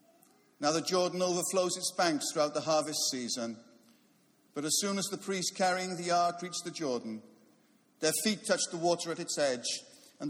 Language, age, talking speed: English, 50-69, 180 wpm